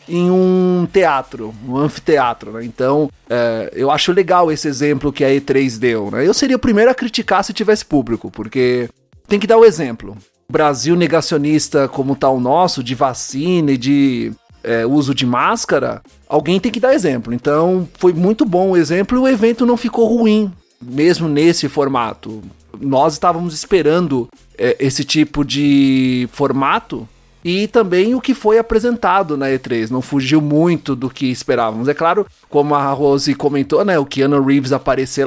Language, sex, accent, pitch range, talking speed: Portuguese, male, Brazilian, 135-190 Hz, 175 wpm